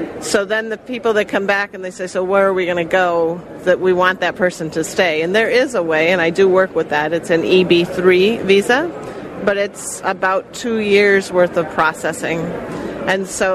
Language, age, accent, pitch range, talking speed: English, 40-59, American, 170-200 Hz, 215 wpm